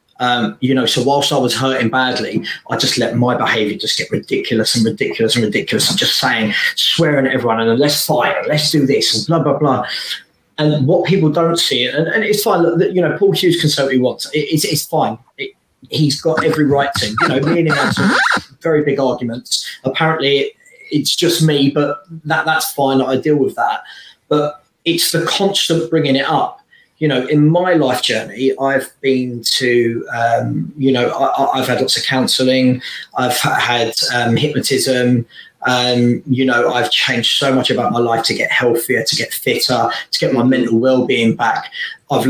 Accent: British